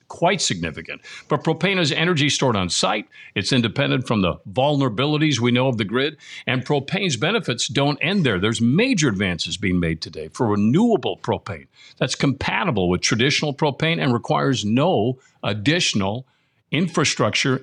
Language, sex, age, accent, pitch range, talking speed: English, male, 50-69, American, 110-150 Hz, 150 wpm